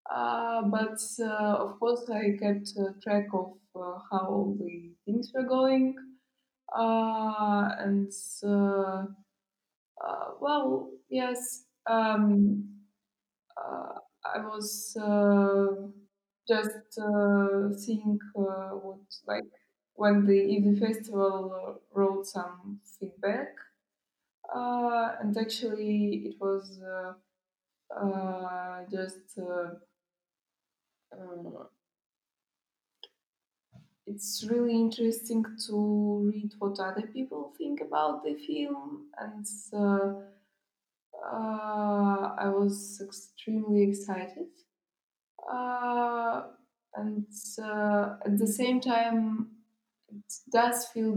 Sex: female